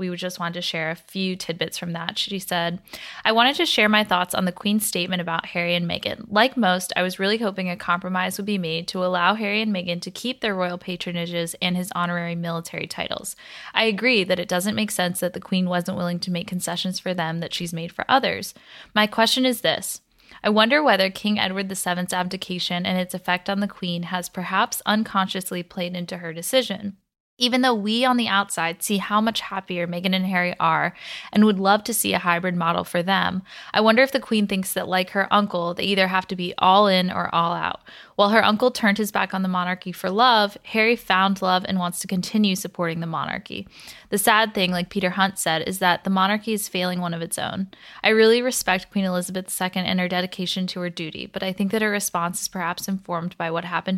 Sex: female